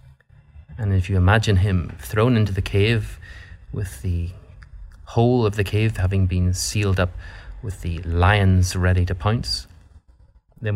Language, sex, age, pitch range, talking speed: English, male, 30-49, 85-100 Hz, 145 wpm